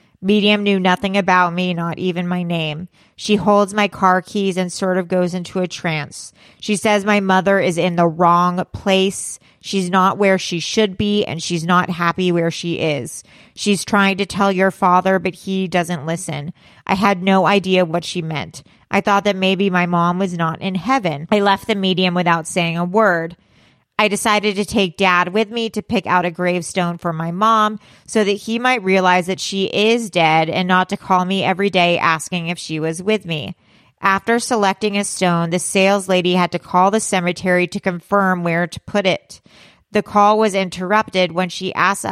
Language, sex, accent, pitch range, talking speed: English, female, American, 175-200 Hz, 200 wpm